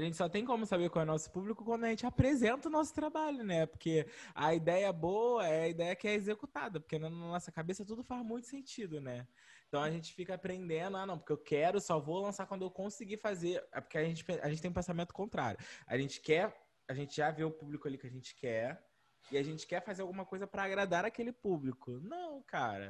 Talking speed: 240 wpm